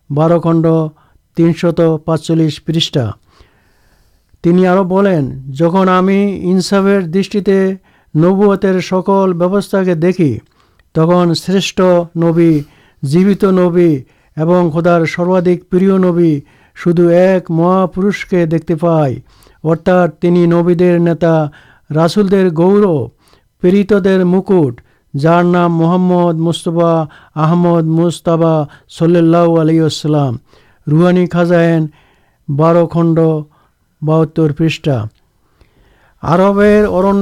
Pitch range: 160-190 Hz